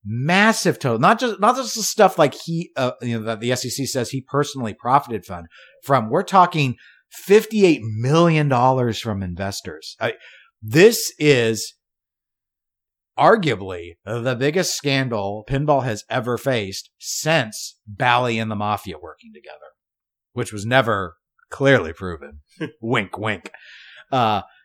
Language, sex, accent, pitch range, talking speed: English, male, American, 110-150 Hz, 135 wpm